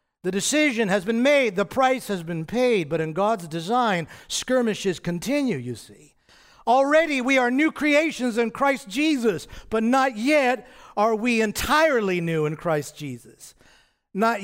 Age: 50-69